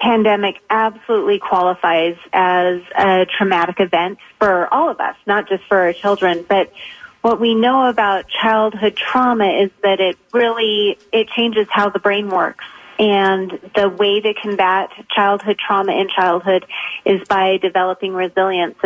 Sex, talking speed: female, 145 wpm